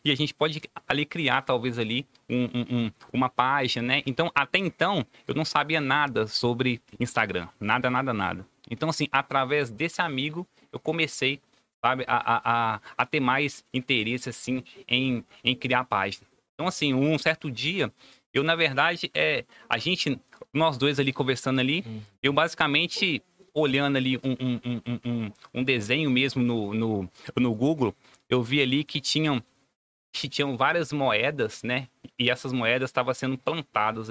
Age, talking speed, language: 20-39, 165 wpm, Portuguese